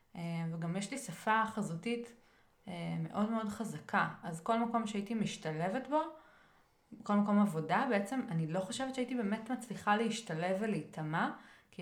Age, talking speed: 20-39, 135 wpm